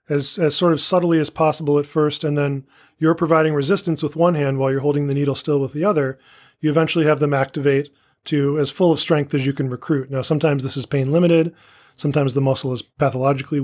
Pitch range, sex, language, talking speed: 140-160 Hz, male, English, 225 wpm